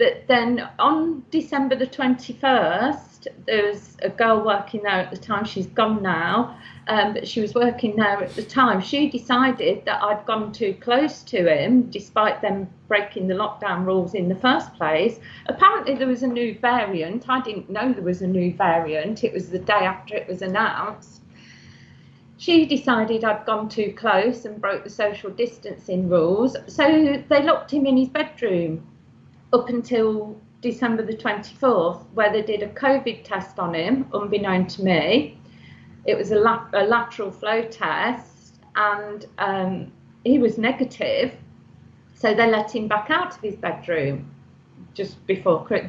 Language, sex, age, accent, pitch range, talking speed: English, female, 40-59, British, 200-255 Hz, 165 wpm